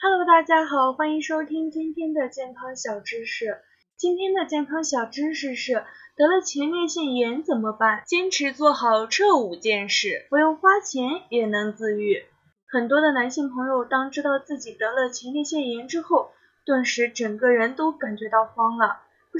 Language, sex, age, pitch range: Chinese, female, 10-29, 230-310 Hz